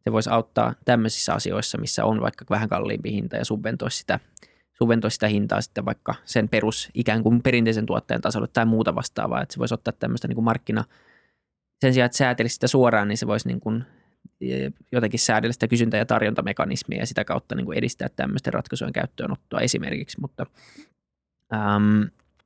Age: 20-39